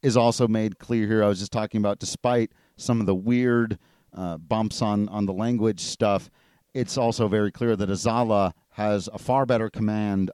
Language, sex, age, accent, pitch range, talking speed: English, male, 40-59, American, 95-125 Hz, 190 wpm